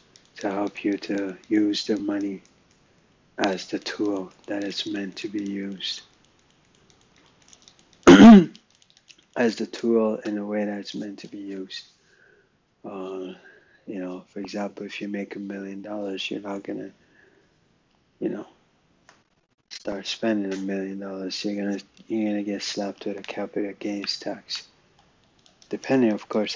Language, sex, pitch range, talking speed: English, male, 100-105 Hz, 140 wpm